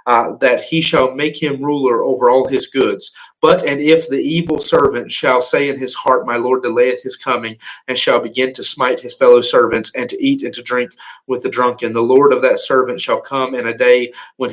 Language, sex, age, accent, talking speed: English, male, 40-59, American, 225 wpm